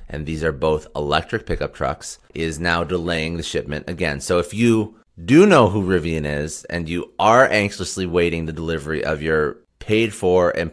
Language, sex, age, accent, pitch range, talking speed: English, male, 30-49, American, 75-90 Hz, 185 wpm